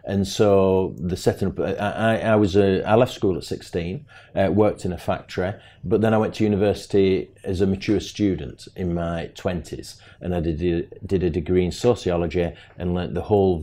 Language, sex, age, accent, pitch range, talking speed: English, male, 40-59, British, 85-100 Hz, 190 wpm